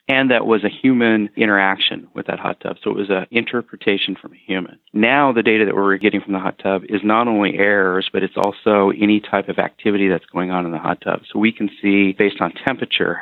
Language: English